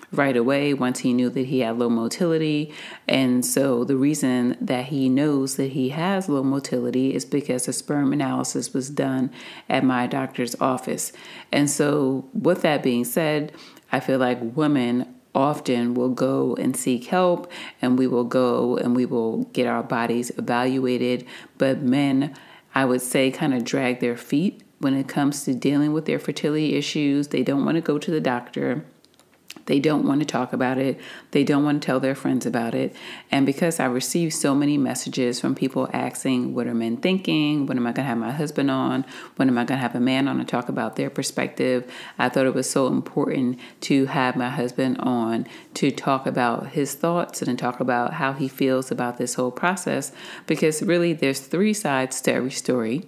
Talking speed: 195 wpm